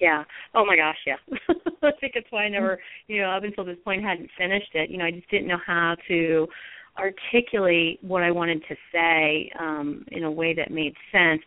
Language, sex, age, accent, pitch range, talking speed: English, female, 30-49, American, 160-180 Hz, 215 wpm